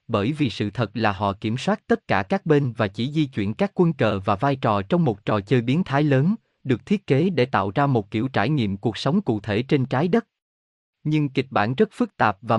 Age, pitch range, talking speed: 20-39, 110-160 Hz, 255 wpm